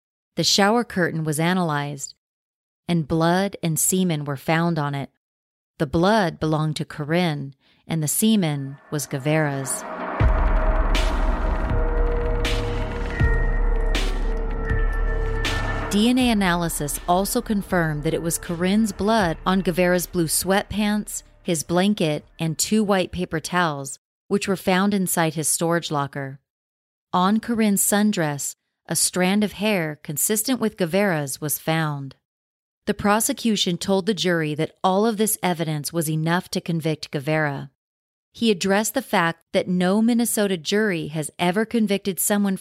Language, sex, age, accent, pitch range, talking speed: English, female, 40-59, American, 155-200 Hz, 125 wpm